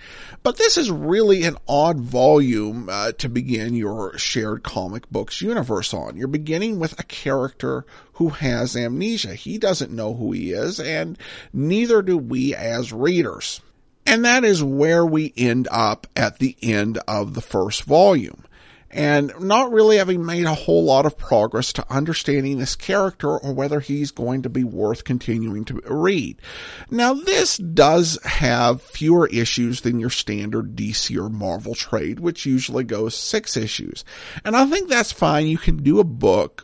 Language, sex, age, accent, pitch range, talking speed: English, male, 50-69, American, 120-180 Hz, 165 wpm